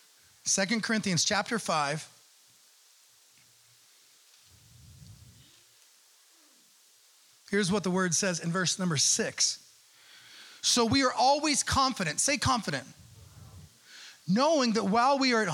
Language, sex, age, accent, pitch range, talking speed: English, male, 30-49, American, 190-255 Hz, 100 wpm